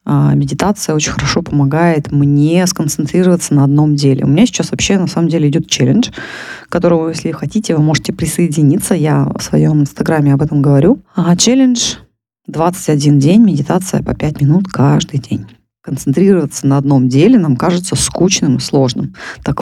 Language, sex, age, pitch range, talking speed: Russian, female, 20-39, 140-175 Hz, 160 wpm